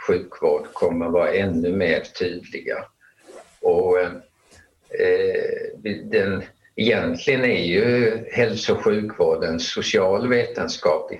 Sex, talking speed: male, 90 wpm